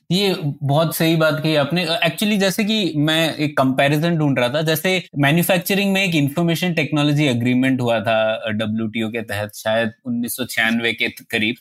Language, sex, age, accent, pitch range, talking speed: Hindi, male, 20-39, native, 135-170 Hz, 160 wpm